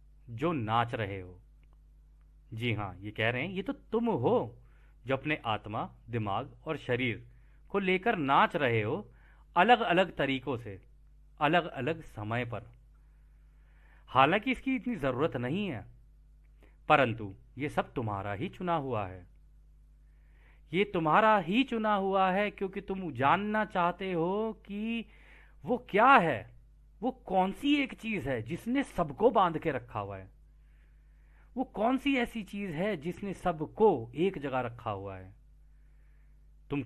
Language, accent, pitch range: Hindi, native, 120-200 Hz